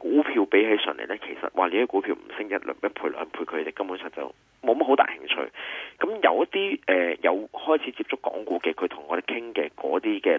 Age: 30-49